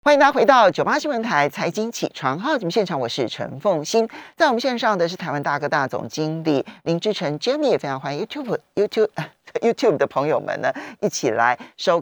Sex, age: male, 40-59